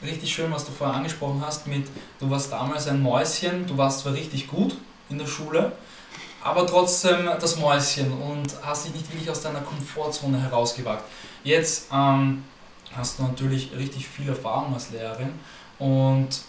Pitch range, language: 135-165 Hz, German